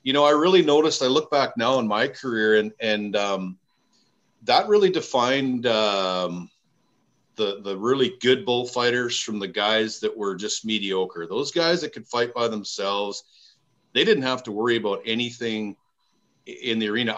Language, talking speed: English, 170 wpm